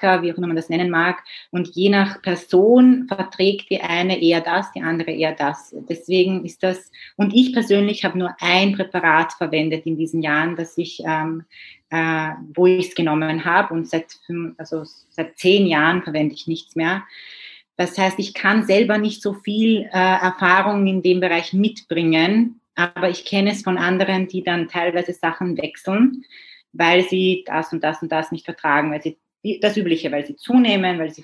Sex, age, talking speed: female, 30-49, 185 wpm